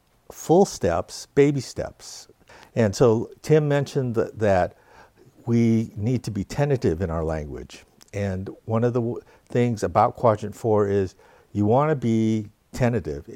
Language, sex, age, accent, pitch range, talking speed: English, male, 60-79, American, 105-140 Hz, 150 wpm